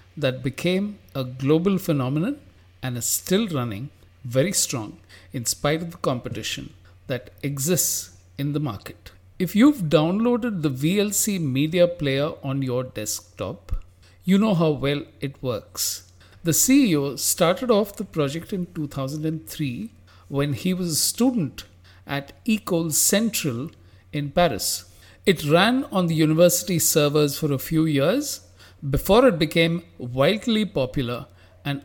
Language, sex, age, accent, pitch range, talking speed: English, male, 50-69, Indian, 120-175 Hz, 135 wpm